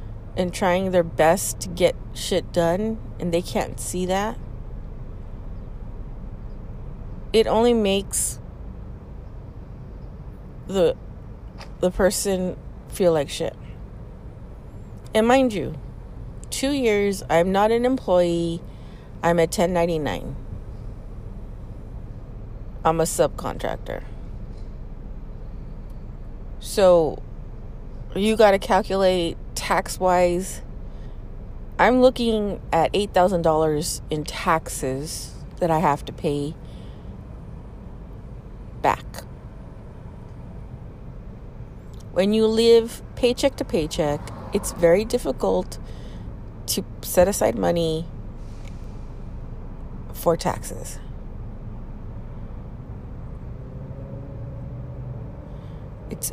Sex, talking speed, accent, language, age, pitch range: female, 75 wpm, American, English, 30-49, 115-190 Hz